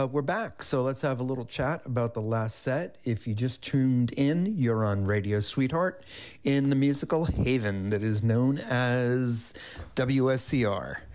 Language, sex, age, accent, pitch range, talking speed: English, male, 40-59, American, 110-130 Hz, 165 wpm